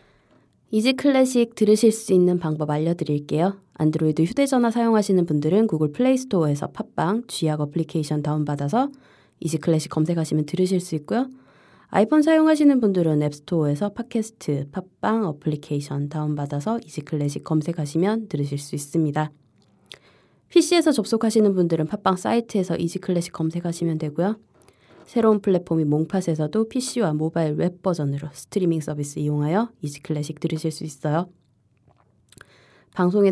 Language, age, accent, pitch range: Korean, 20-39, native, 150-205 Hz